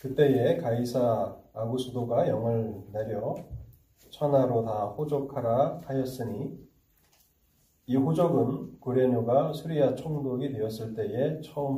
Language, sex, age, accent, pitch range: Korean, male, 30-49, native, 110-135 Hz